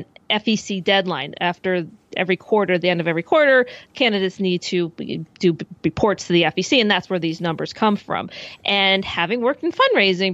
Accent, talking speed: American, 175 wpm